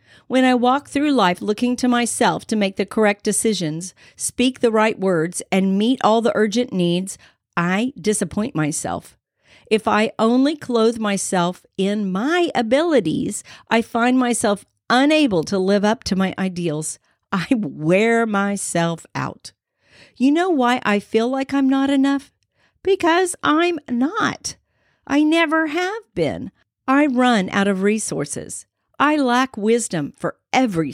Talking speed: 145 wpm